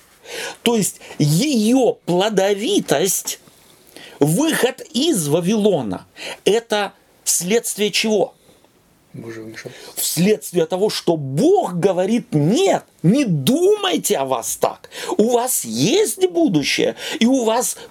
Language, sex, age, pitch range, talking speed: Russian, male, 40-59, 150-240 Hz, 95 wpm